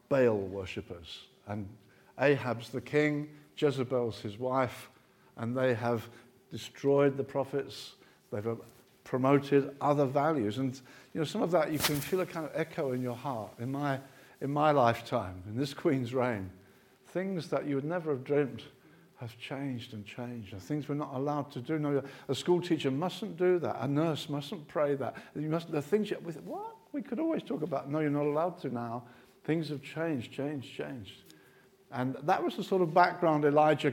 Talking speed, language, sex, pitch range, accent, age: 180 wpm, English, male, 120-150 Hz, British, 50-69